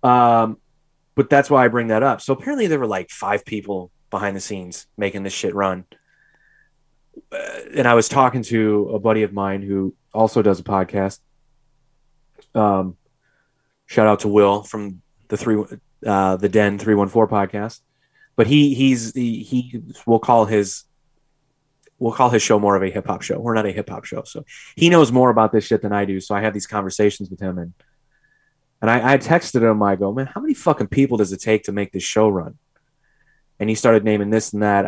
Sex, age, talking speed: male, 30-49, 210 wpm